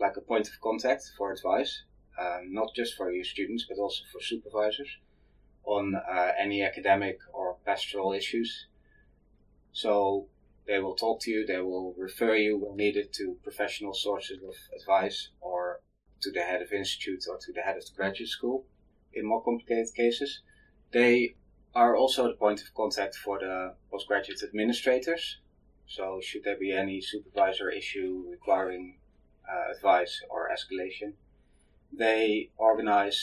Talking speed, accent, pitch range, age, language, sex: 150 wpm, Dutch, 95-120 Hz, 30-49, English, male